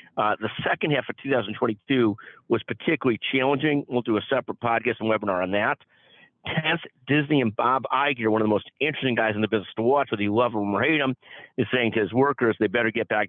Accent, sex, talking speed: American, male, 225 wpm